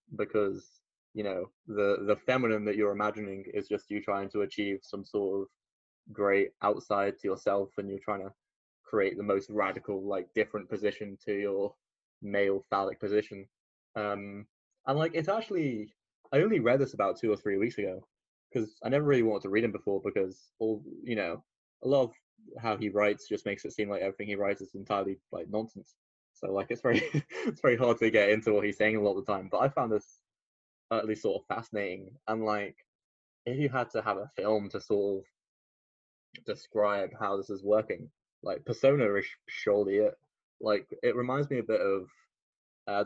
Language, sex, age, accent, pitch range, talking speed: English, male, 10-29, British, 100-115 Hz, 195 wpm